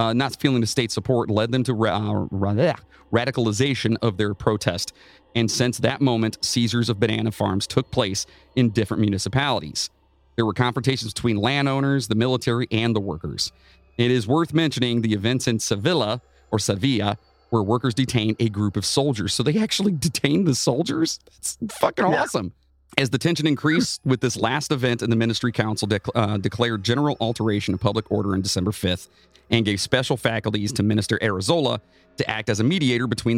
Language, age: English, 40-59